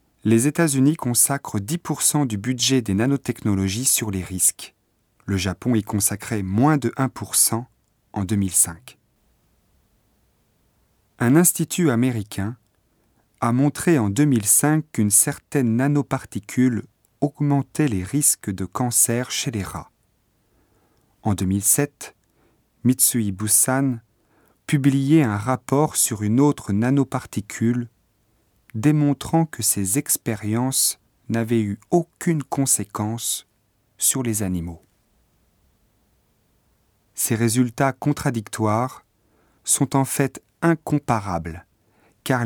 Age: 40-59